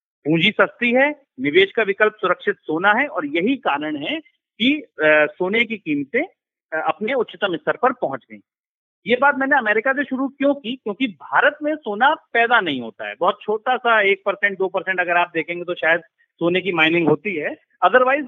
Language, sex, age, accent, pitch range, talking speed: Hindi, male, 40-59, native, 175-270 Hz, 185 wpm